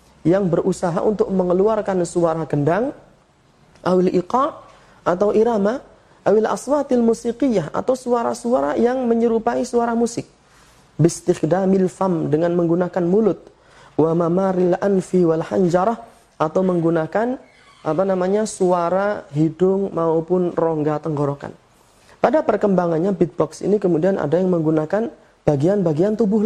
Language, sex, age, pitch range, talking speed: Indonesian, male, 30-49, 165-210 Hz, 110 wpm